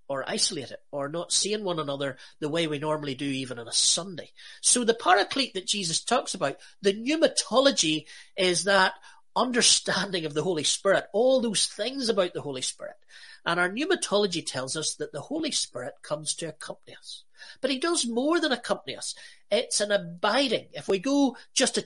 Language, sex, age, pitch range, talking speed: English, male, 30-49, 155-250 Hz, 185 wpm